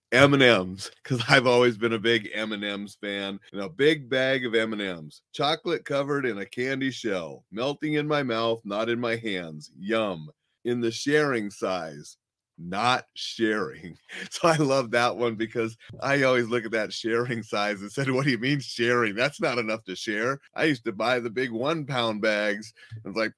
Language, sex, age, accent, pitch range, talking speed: English, male, 30-49, American, 105-130 Hz, 190 wpm